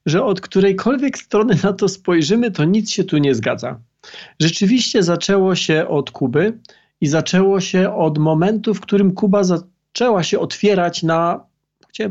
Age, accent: 40-59, native